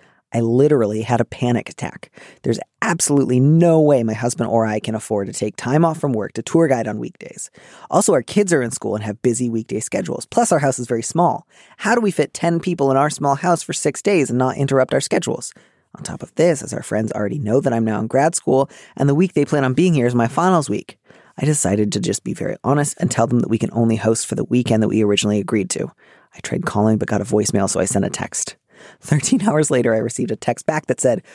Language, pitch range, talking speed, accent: English, 115-150 Hz, 255 wpm, American